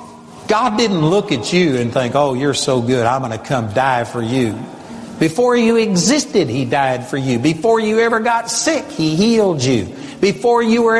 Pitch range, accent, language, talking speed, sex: 145-230 Hz, American, English, 190 wpm, male